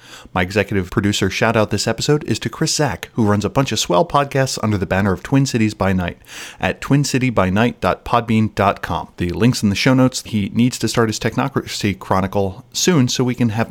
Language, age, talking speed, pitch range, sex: English, 30-49, 200 wpm, 100-125 Hz, male